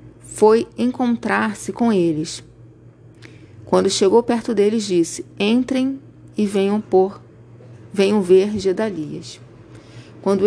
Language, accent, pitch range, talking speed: Portuguese, Brazilian, 170-210 Hz, 95 wpm